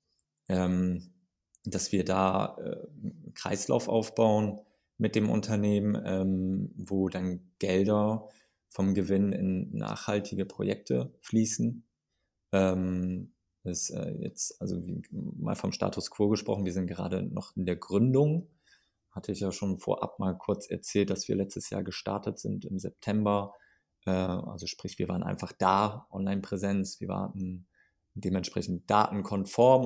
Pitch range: 95-105 Hz